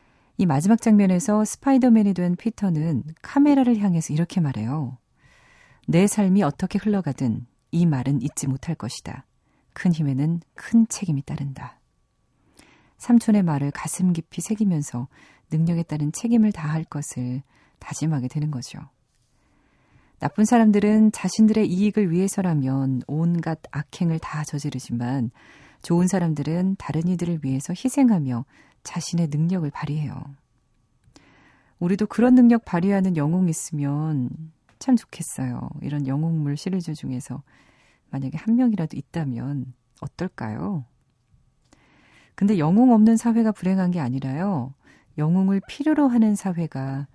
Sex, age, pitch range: female, 40-59, 140-195 Hz